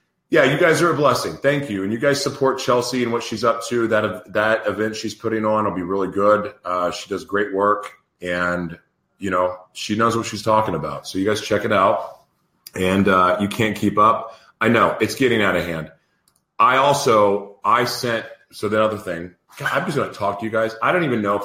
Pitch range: 90-110 Hz